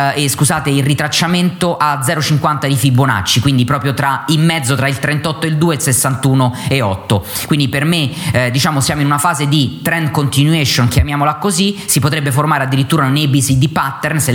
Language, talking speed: Italian, 190 wpm